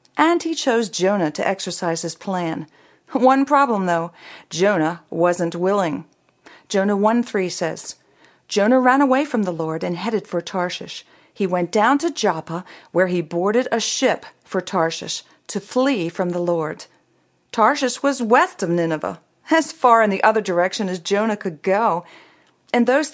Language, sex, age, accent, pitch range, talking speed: English, female, 40-59, American, 175-240 Hz, 160 wpm